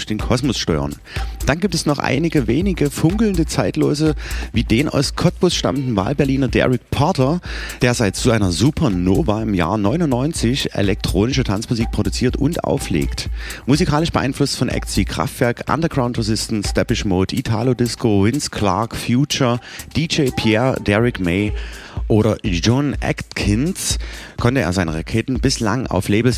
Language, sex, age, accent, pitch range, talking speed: German, male, 30-49, German, 100-135 Hz, 140 wpm